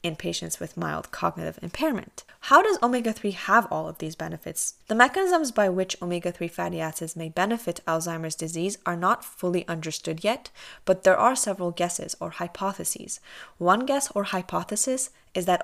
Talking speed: 165 wpm